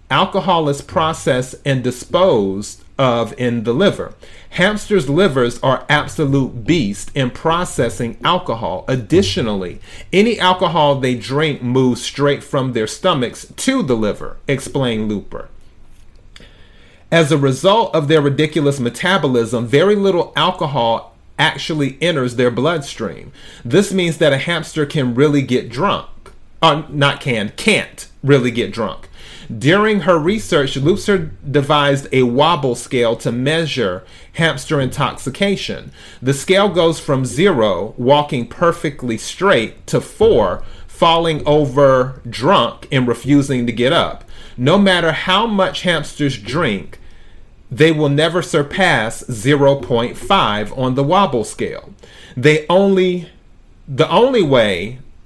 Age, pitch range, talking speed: 40-59, 120-165 Hz, 120 wpm